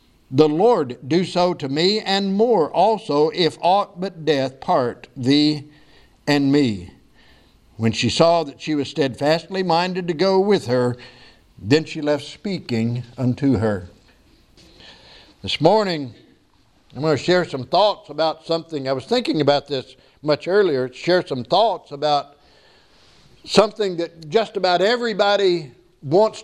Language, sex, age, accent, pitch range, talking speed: English, male, 60-79, American, 135-180 Hz, 140 wpm